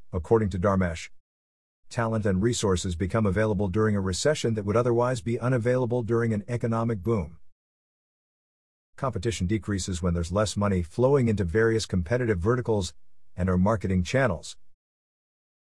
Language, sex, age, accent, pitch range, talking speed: English, male, 50-69, American, 90-115 Hz, 135 wpm